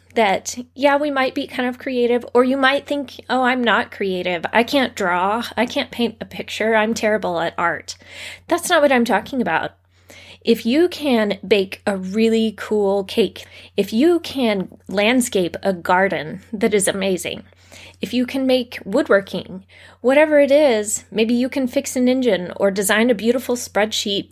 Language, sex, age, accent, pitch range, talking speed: English, female, 20-39, American, 195-250 Hz, 175 wpm